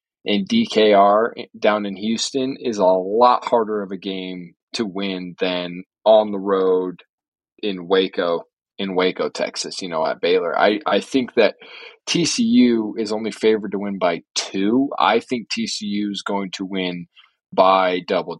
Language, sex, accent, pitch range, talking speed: English, male, American, 95-115 Hz, 155 wpm